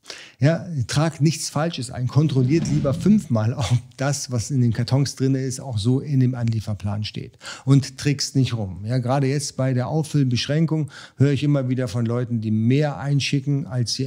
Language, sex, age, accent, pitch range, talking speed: German, male, 50-69, German, 120-145 Hz, 185 wpm